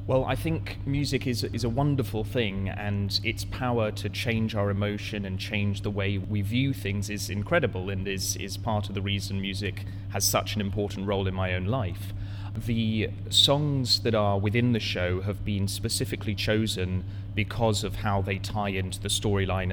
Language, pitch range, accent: English, 100-110 Hz, British